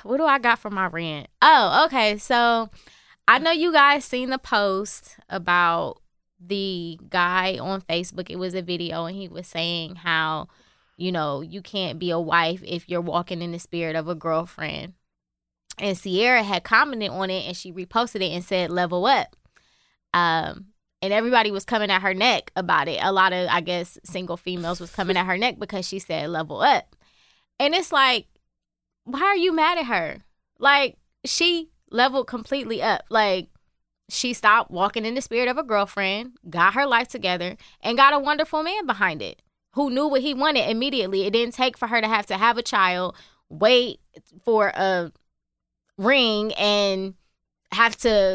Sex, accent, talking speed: female, American, 180 wpm